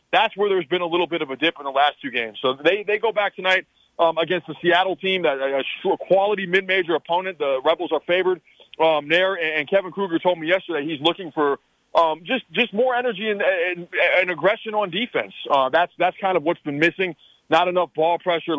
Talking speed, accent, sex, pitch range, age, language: 225 wpm, American, male, 145-185 Hz, 30-49, English